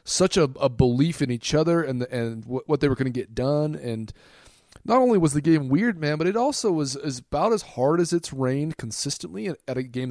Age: 30-49